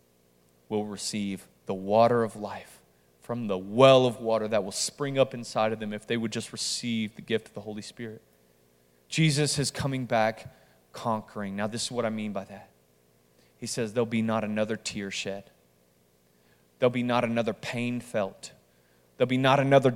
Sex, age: male, 30-49